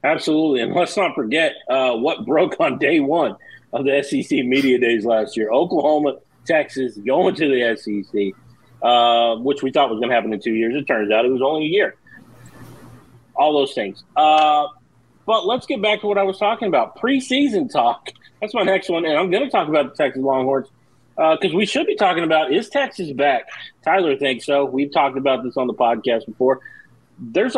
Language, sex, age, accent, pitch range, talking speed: English, male, 40-59, American, 120-155 Hz, 205 wpm